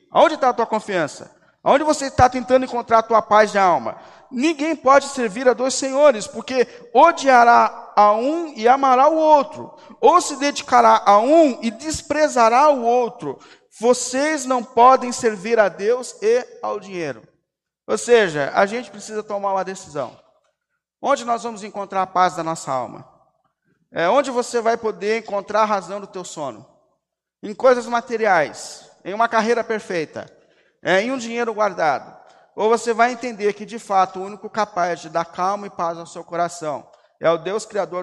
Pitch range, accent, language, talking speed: 175-240 Hz, Brazilian, Portuguese, 170 wpm